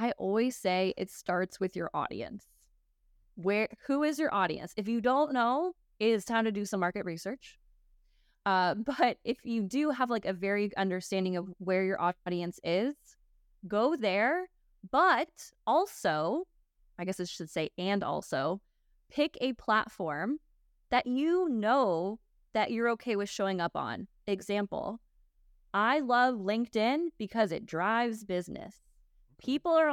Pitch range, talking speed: 180-235 Hz, 150 wpm